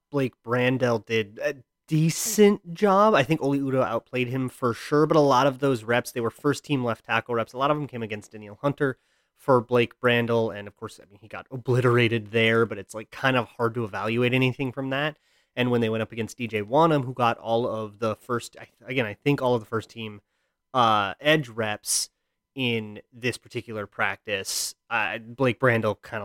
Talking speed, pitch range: 210 wpm, 110-135 Hz